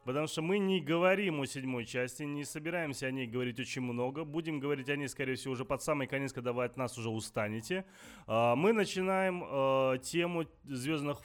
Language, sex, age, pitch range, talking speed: Russian, male, 20-39, 115-145 Hz, 185 wpm